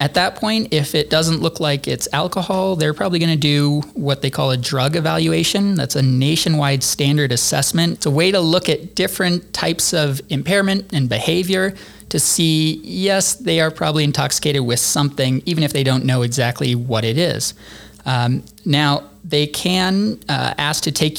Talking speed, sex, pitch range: 180 wpm, male, 135-165 Hz